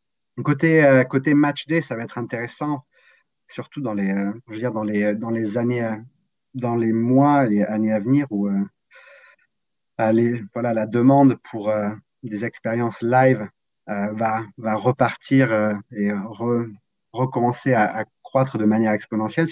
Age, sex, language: 30-49, male, French